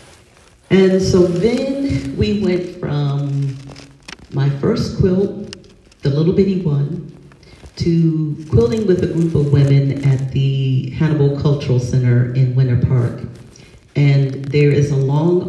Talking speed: 130 wpm